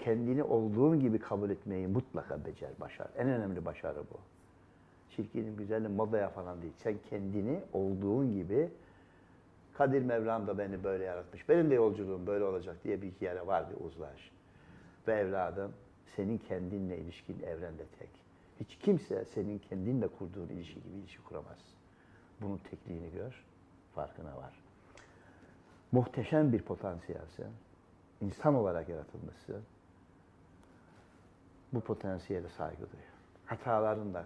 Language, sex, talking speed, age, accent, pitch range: Turkish, male, 125 wpm, 60-79, native, 90-115 Hz